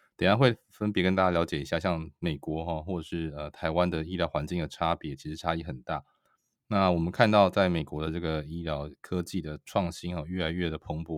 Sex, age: male, 20-39